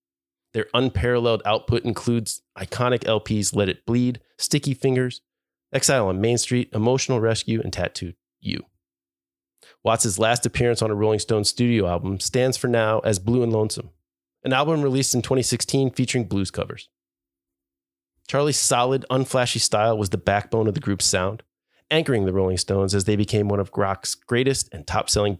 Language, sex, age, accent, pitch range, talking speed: English, male, 30-49, American, 95-125 Hz, 160 wpm